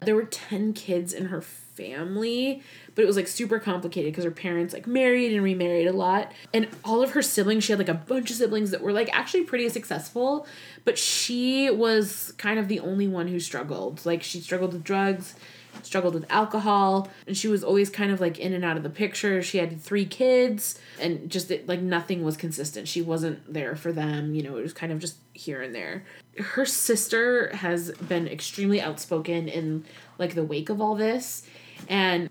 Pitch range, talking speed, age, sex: 165-205 Hz, 205 wpm, 20-39, female